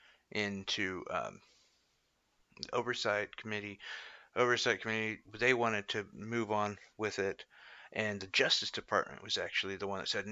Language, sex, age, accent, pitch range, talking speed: English, male, 30-49, American, 95-115 Hz, 135 wpm